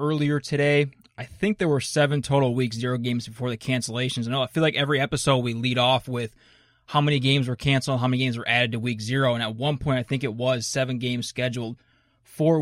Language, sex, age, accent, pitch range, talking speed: English, male, 20-39, American, 125-145 Hz, 240 wpm